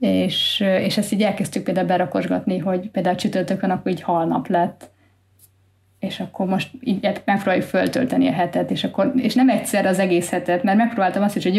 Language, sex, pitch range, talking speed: Hungarian, female, 175-225 Hz, 175 wpm